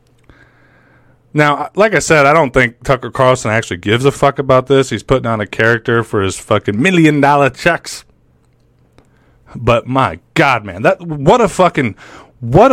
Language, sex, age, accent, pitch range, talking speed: English, male, 30-49, American, 120-150 Hz, 160 wpm